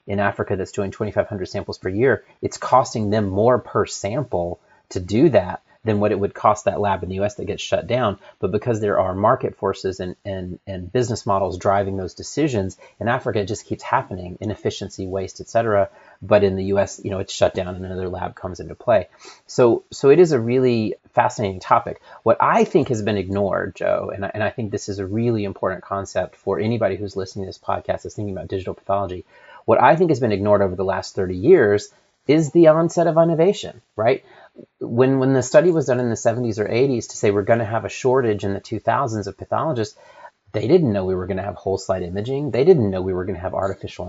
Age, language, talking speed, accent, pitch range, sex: 30-49, English, 230 wpm, American, 95-120 Hz, male